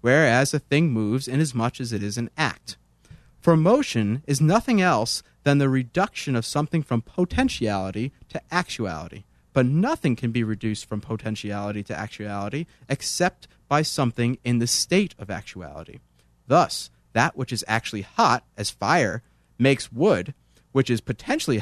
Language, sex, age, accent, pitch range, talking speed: English, male, 30-49, American, 110-155 Hz, 155 wpm